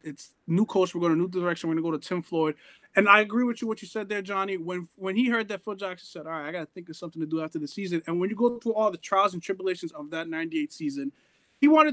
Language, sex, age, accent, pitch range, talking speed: English, male, 20-39, American, 180-245 Hz, 310 wpm